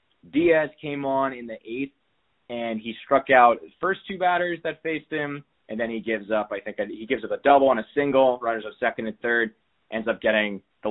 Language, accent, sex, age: English, American, male, 20-39